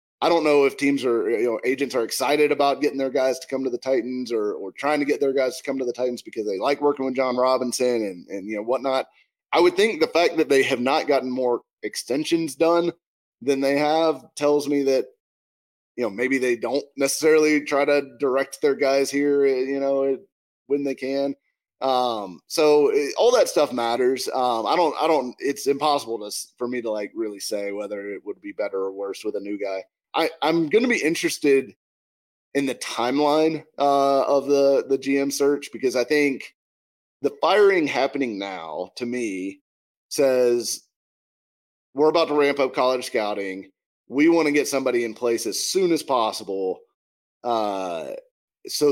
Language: English